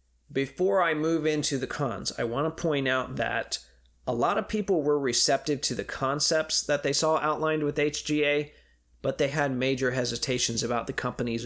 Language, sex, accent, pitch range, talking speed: English, male, American, 120-150 Hz, 185 wpm